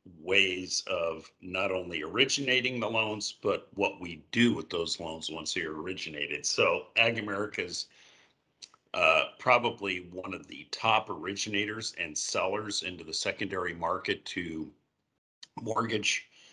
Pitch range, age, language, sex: 95-115 Hz, 50-69, English, male